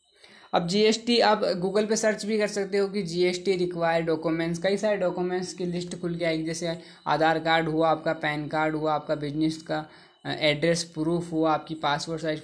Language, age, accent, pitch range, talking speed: Hindi, 20-39, native, 155-195 Hz, 195 wpm